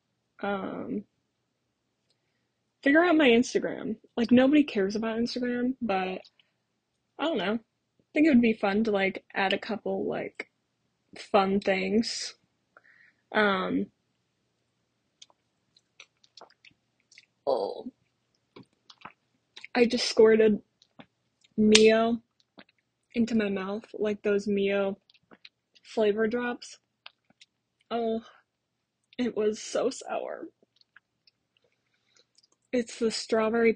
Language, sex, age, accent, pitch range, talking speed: English, female, 20-39, American, 200-245 Hz, 90 wpm